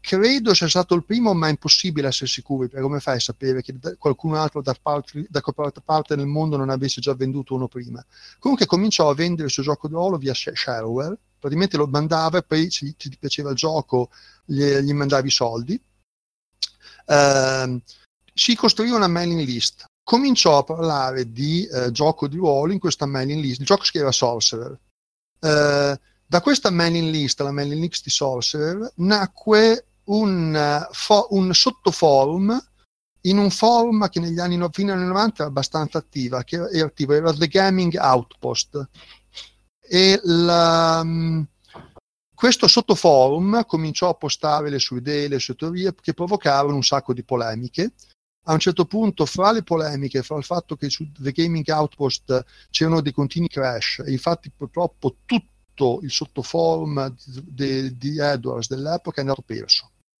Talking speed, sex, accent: 170 wpm, male, native